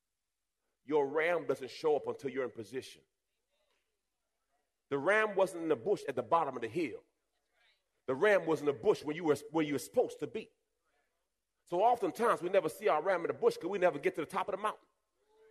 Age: 40-59